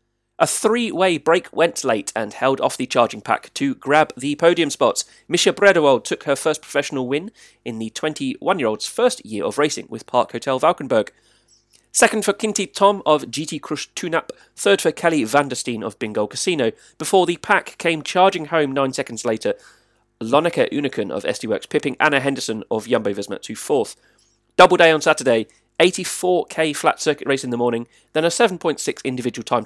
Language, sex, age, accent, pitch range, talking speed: English, male, 30-49, British, 125-180 Hz, 175 wpm